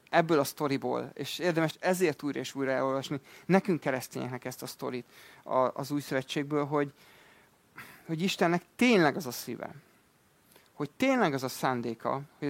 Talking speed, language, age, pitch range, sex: 150 wpm, Hungarian, 30-49, 135-170 Hz, male